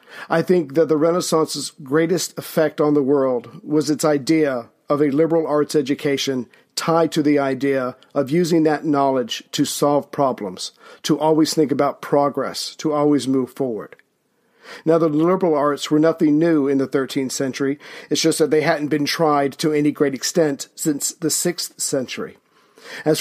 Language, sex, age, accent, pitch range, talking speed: English, male, 50-69, American, 140-160 Hz, 170 wpm